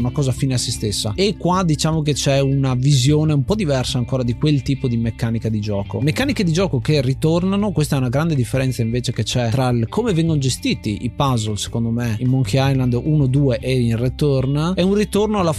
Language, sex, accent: Italian, male, native